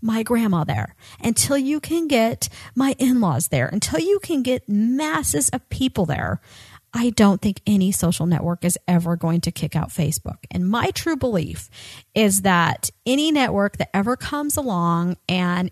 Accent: American